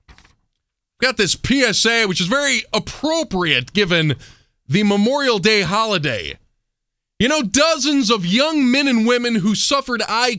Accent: American